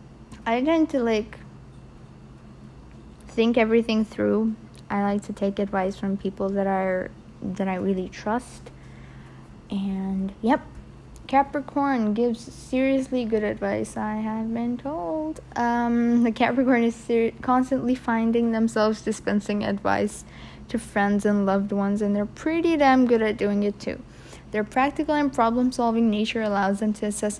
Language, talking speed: English, 140 wpm